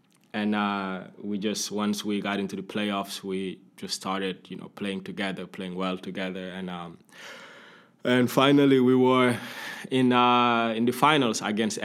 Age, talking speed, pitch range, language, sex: 20-39, 160 wpm, 95-115 Hz, Finnish, male